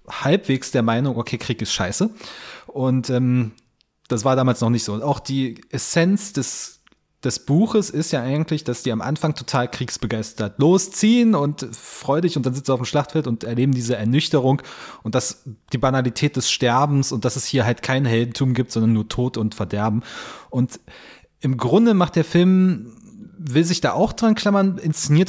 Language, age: German, 30-49